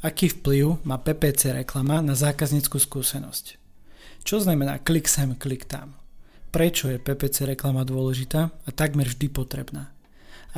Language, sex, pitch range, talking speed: Slovak, male, 130-150 Hz, 135 wpm